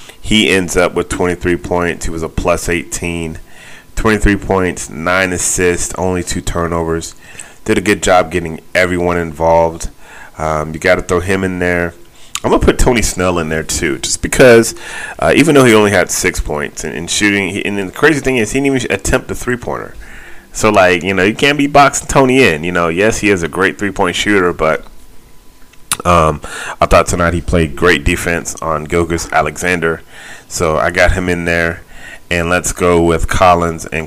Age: 30-49